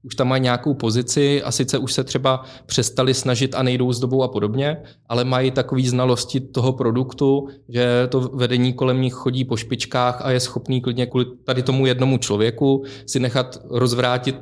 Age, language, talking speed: 20-39, Czech, 185 wpm